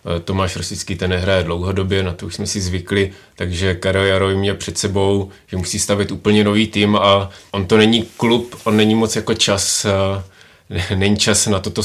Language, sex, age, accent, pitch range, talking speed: Czech, male, 30-49, native, 90-100 Hz, 180 wpm